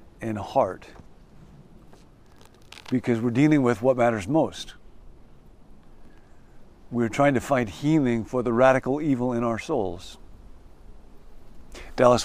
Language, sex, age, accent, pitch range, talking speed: English, male, 50-69, American, 105-140 Hz, 110 wpm